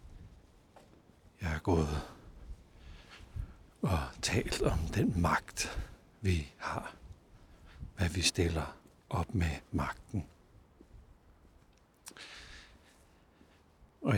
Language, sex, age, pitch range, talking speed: Danish, male, 60-79, 80-95 Hz, 70 wpm